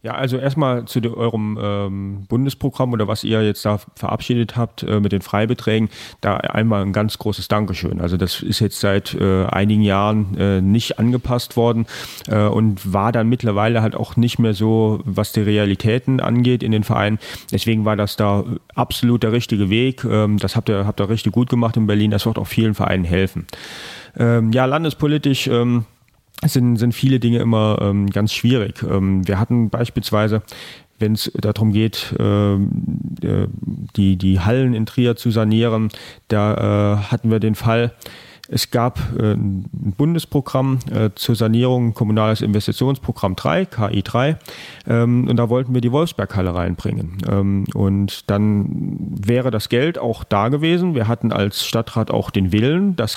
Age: 30-49